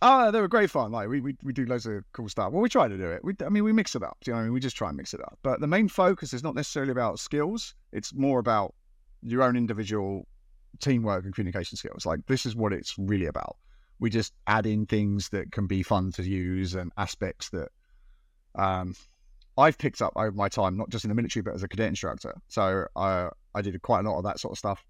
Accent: British